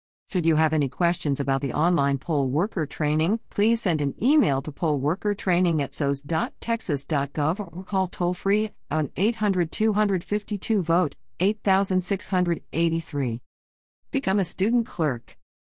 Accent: American